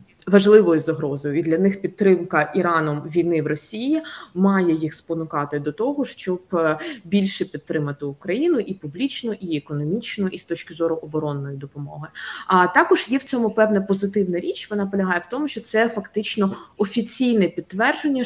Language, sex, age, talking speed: Ukrainian, female, 20-39, 150 wpm